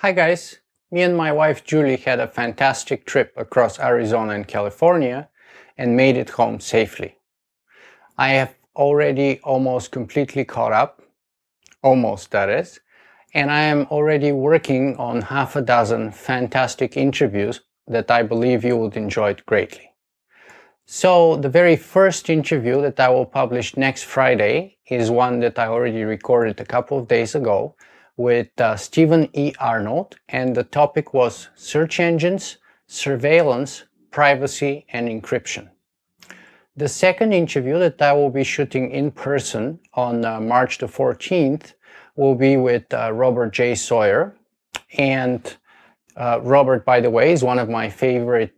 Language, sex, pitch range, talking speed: English, male, 120-145 Hz, 145 wpm